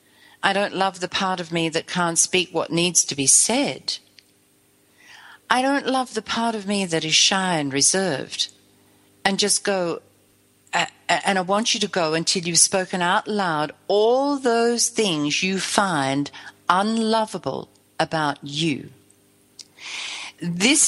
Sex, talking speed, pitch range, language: female, 145 wpm, 150-220 Hz, English